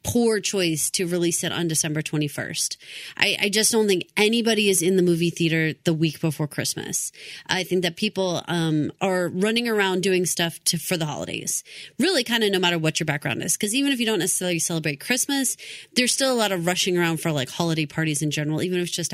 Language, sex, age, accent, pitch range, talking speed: English, female, 30-49, American, 170-230 Hz, 225 wpm